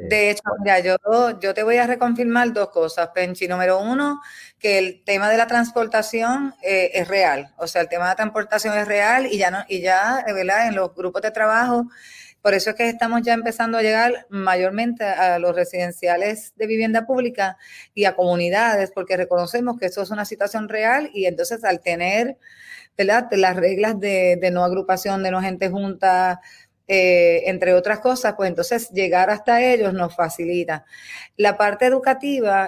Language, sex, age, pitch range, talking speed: Spanish, female, 30-49, 185-225 Hz, 180 wpm